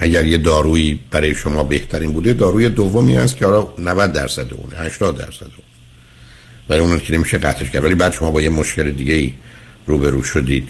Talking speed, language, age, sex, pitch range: 185 wpm, Persian, 60-79, male, 70-90 Hz